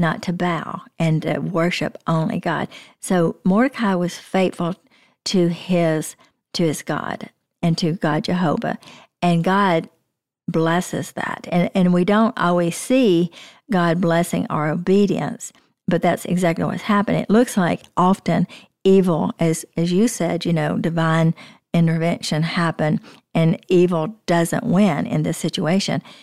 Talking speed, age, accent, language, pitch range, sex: 140 wpm, 50-69, American, English, 165-200 Hz, female